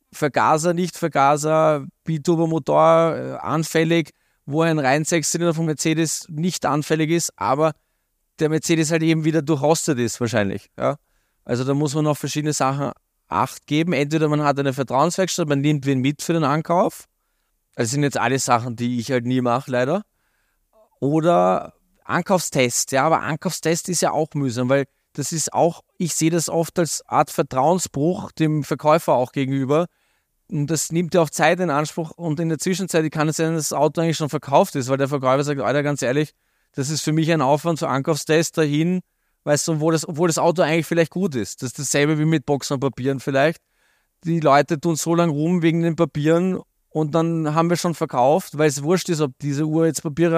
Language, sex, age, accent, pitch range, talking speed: English, male, 20-39, German, 145-165 Hz, 195 wpm